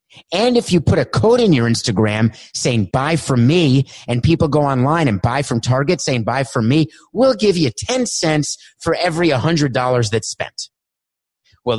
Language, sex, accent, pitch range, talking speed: English, male, American, 115-160 Hz, 185 wpm